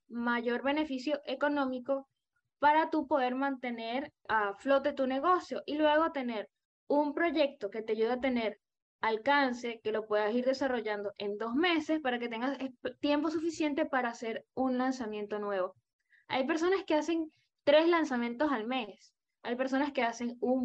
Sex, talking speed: female, 155 wpm